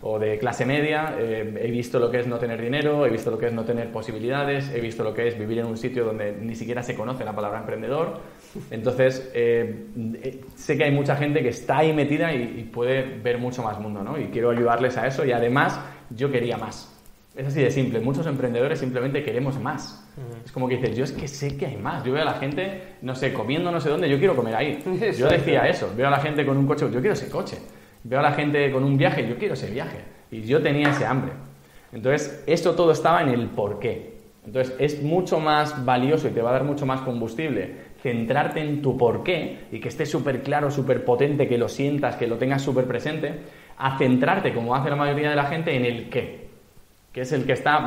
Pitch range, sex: 120-145 Hz, male